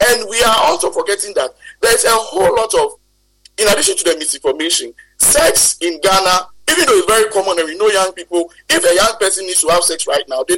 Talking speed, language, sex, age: 235 wpm, English, male, 50-69